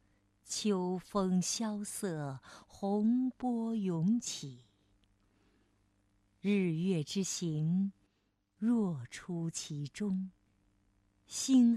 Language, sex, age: Chinese, female, 50-69